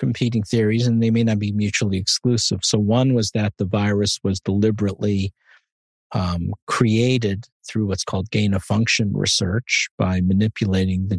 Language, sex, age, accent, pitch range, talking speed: English, male, 50-69, American, 95-115 Hz, 155 wpm